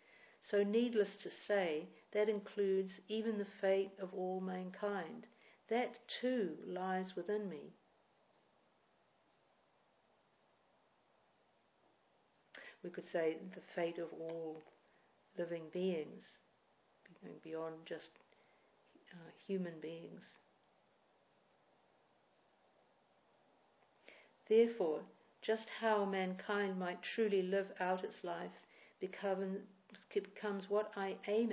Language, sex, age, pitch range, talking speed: English, female, 60-79, 180-210 Hz, 85 wpm